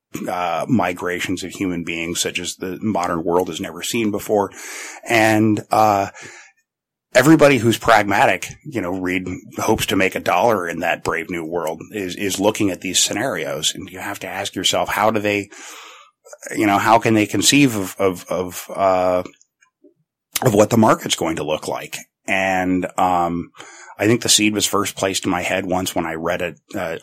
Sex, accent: male, American